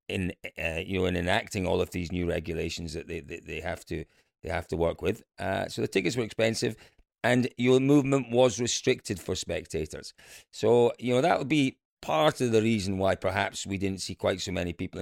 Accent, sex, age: British, male, 40-59